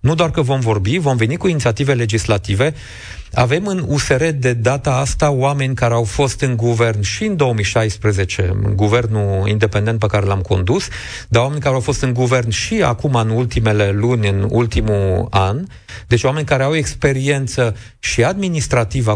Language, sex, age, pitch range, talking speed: Romanian, male, 40-59, 105-140 Hz, 170 wpm